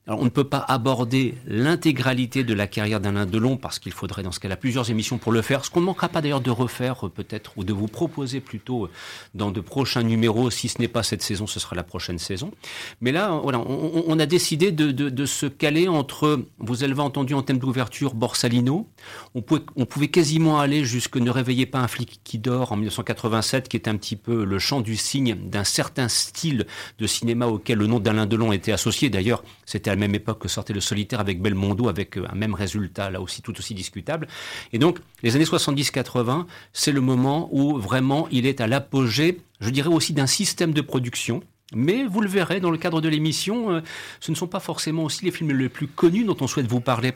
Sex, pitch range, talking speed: male, 110-145 Hz, 225 wpm